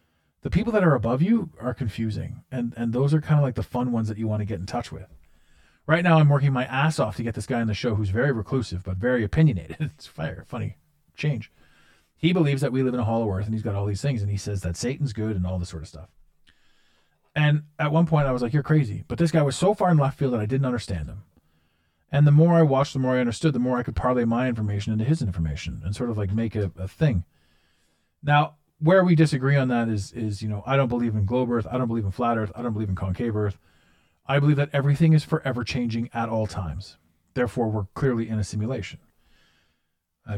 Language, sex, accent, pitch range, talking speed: English, male, American, 90-135 Hz, 255 wpm